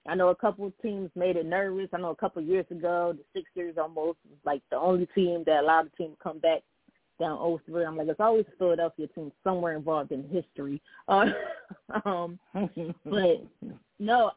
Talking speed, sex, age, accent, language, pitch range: 190 wpm, female, 20-39, American, English, 165-195 Hz